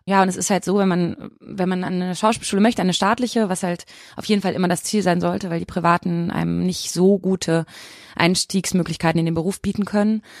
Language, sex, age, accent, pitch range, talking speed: German, female, 20-39, German, 160-185 Hz, 220 wpm